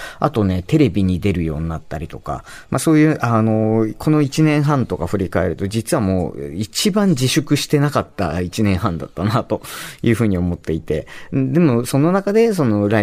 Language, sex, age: Japanese, male, 40-59